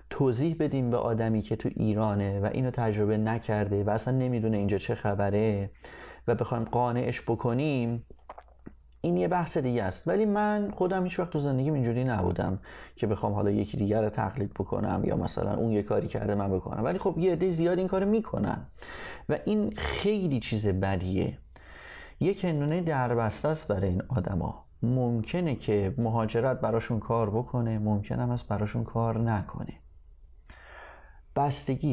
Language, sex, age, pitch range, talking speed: Persian, male, 30-49, 110-145 Hz, 155 wpm